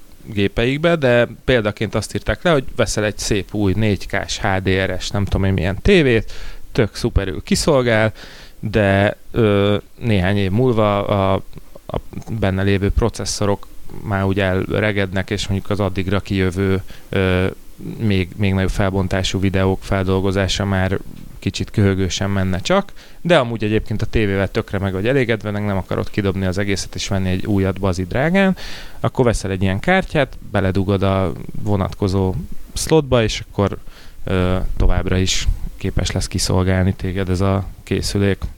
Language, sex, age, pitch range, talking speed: Hungarian, male, 30-49, 95-105 Hz, 140 wpm